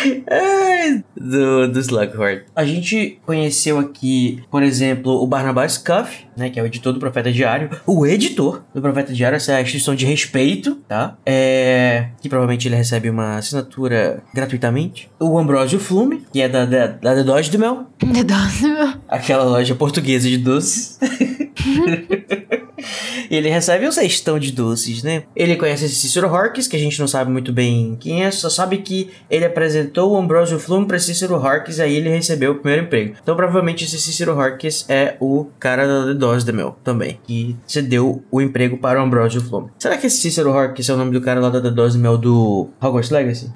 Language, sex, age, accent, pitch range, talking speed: Portuguese, male, 20-39, Brazilian, 125-170 Hz, 185 wpm